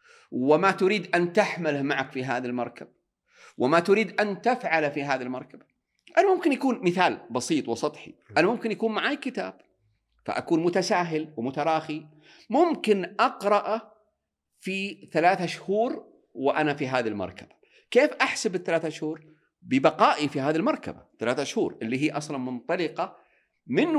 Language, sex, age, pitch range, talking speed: Arabic, male, 50-69, 140-220 Hz, 135 wpm